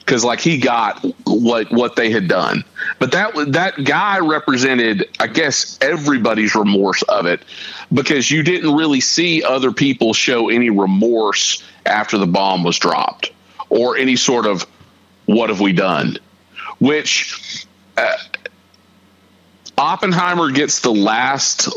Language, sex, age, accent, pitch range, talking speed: English, male, 40-59, American, 100-155 Hz, 140 wpm